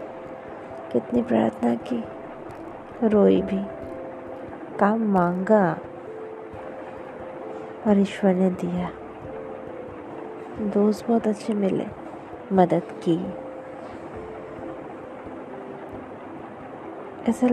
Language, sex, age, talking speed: English, female, 20-39, 55 wpm